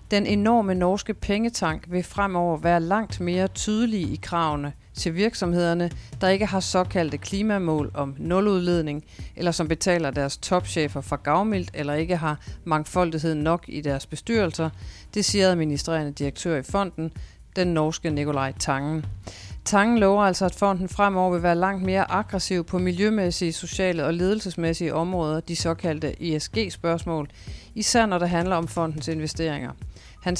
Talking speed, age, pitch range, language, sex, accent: 150 wpm, 40-59, 150-195 Hz, Danish, female, native